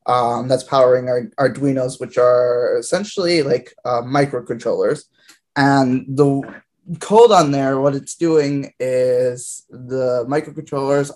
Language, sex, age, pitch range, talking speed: English, male, 20-39, 125-145 Hz, 125 wpm